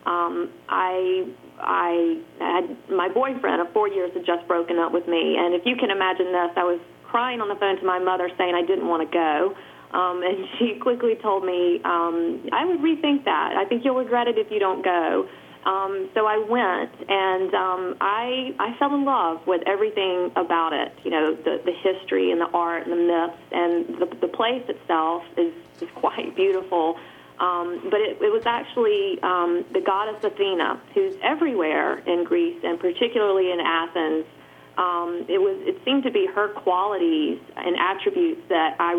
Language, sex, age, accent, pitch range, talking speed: English, female, 30-49, American, 175-240 Hz, 190 wpm